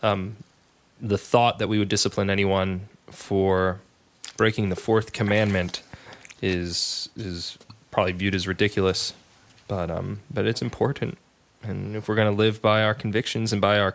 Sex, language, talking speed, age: male, English, 150 wpm, 20-39